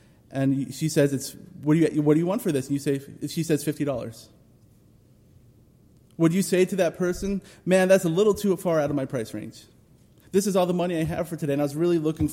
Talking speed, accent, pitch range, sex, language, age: 245 wpm, American, 130-175 Hz, male, English, 30-49